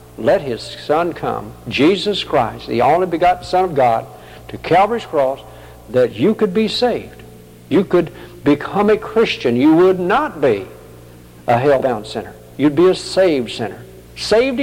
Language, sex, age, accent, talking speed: English, male, 60-79, American, 155 wpm